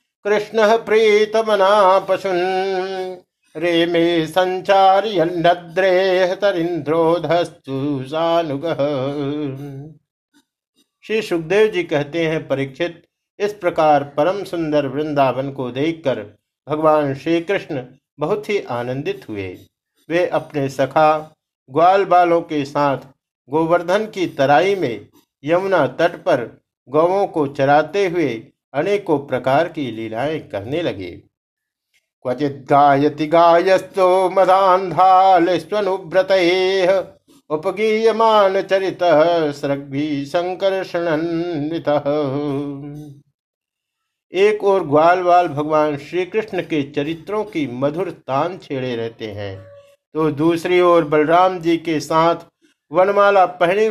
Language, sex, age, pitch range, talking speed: Hindi, male, 50-69, 145-185 Hz, 75 wpm